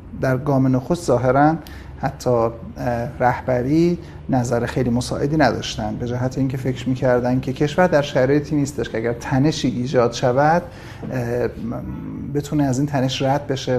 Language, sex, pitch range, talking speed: Persian, male, 125-150 Hz, 130 wpm